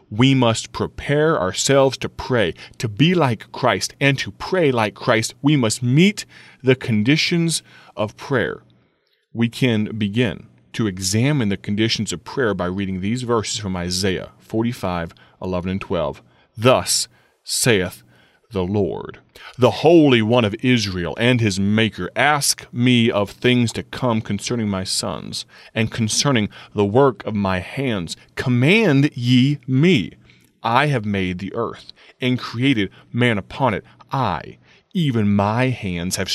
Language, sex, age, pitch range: English, male, 30-49, 100-130 Hz